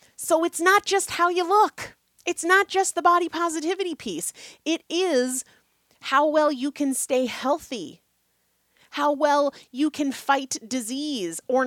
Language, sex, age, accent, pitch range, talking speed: English, female, 30-49, American, 220-320 Hz, 150 wpm